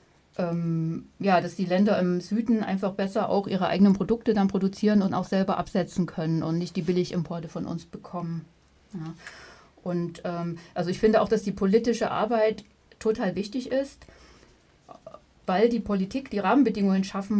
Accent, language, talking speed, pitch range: German, German, 155 wpm, 185-220 Hz